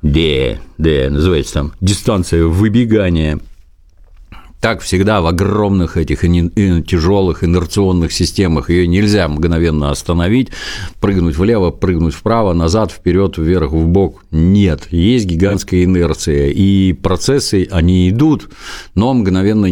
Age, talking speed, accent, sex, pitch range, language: 50-69, 115 wpm, native, male, 80-105 Hz, Russian